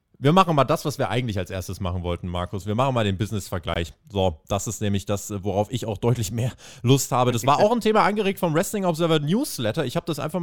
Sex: male